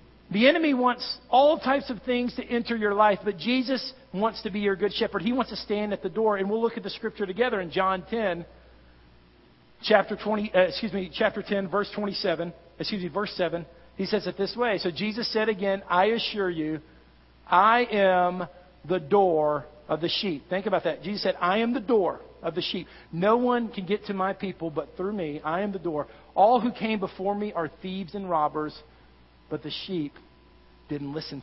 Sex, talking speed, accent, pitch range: male, 205 wpm, American, 160-210 Hz